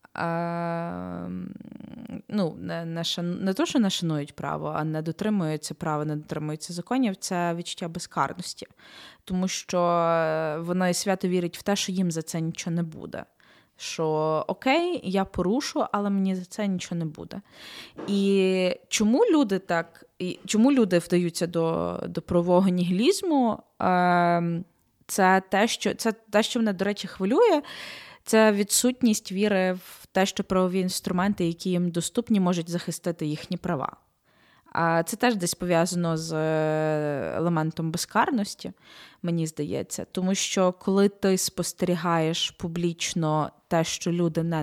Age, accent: 20-39, native